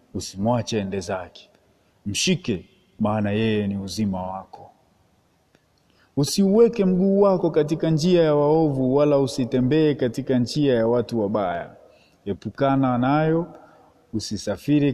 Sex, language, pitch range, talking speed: male, Swahili, 115-165 Hz, 105 wpm